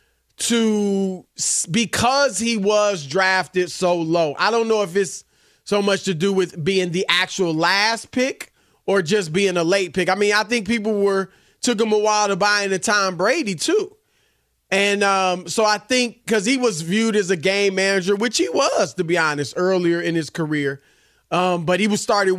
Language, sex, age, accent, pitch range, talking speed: English, male, 30-49, American, 185-230 Hz, 195 wpm